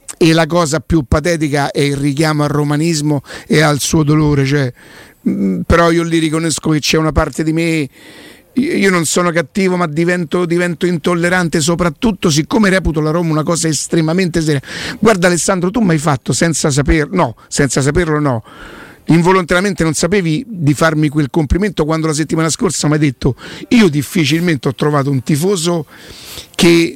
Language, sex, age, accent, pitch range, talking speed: Italian, male, 50-69, native, 155-185 Hz, 170 wpm